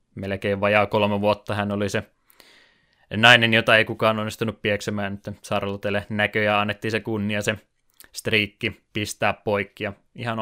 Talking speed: 140 wpm